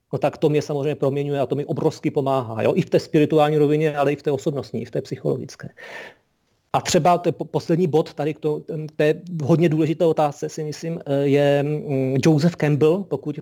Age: 40-59